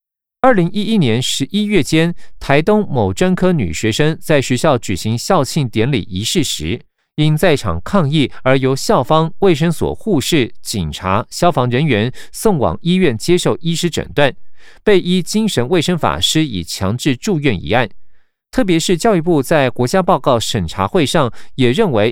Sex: male